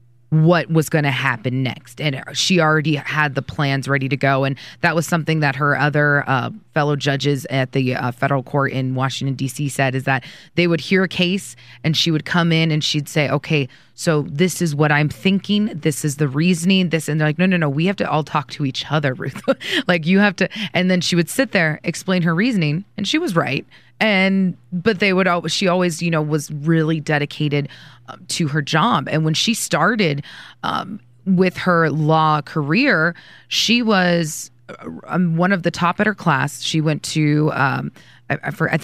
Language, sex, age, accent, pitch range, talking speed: English, female, 20-39, American, 140-175 Hz, 200 wpm